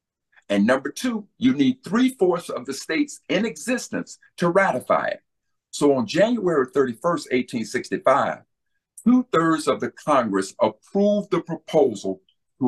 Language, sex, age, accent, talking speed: English, male, 50-69, American, 130 wpm